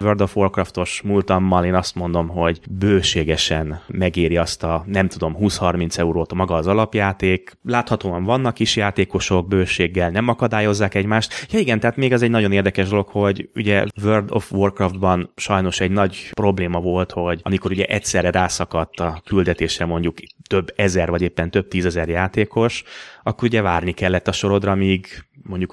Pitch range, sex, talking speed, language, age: 85-100 Hz, male, 165 wpm, Hungarian, 30-49